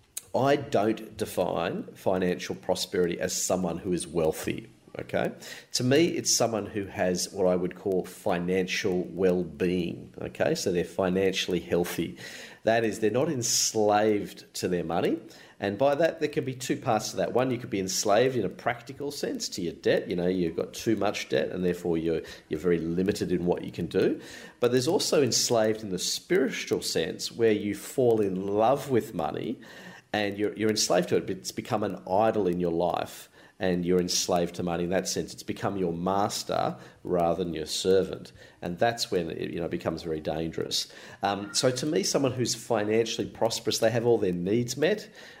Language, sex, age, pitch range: English, male, 40-59, 90-120 Hz